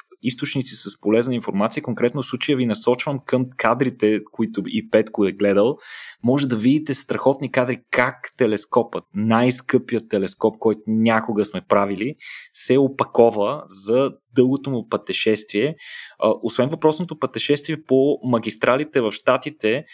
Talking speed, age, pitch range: 125 wpm, 20-39, 110-145 Hz